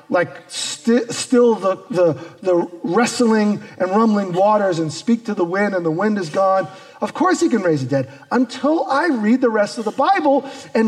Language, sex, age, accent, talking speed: English, male, 40-59, American, 195 wpm